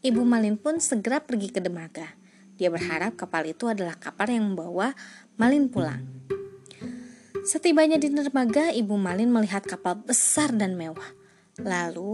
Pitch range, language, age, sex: 195-305 Hz, Indonesian, 20-39, female